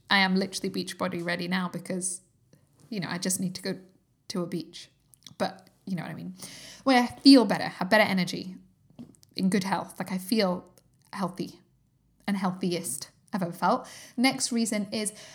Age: 20-39